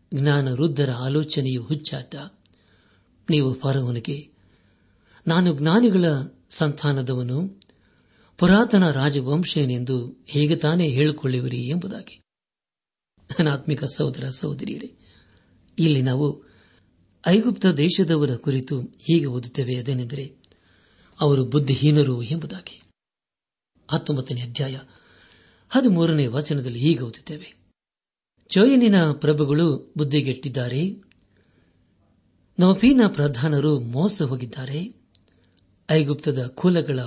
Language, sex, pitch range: Kannada, male, 125-155 Hz